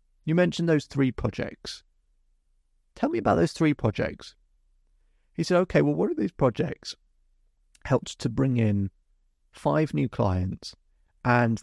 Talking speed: 140 wpm